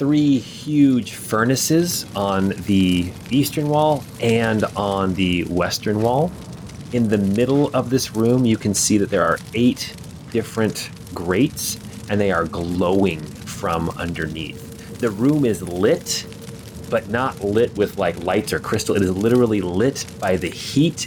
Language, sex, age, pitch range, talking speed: English, male, 30-49, 90-120 Hz, 150 wpm